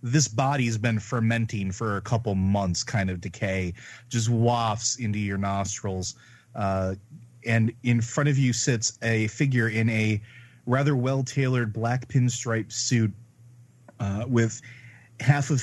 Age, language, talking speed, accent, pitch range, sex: 30-49, English, 145 wpm, American, 100-120 Hz, male